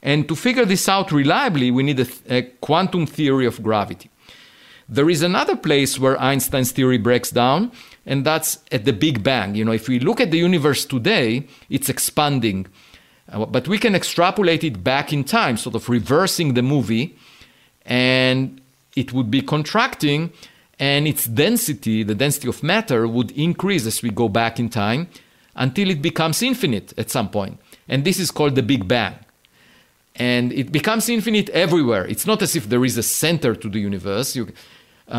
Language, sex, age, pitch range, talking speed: English, male, 50-69, 120-165 Hz, 180 wpm